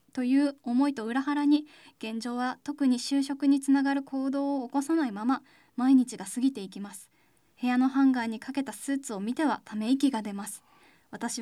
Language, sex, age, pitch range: Japanese, female, 10-29, 240-275 Hz